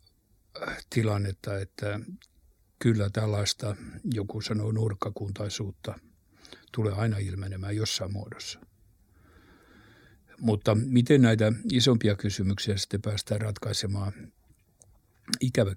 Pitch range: 100-110 Hz